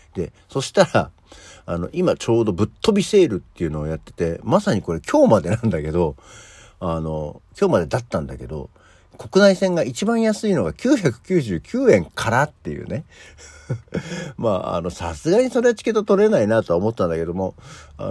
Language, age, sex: Japanese, 60-79, male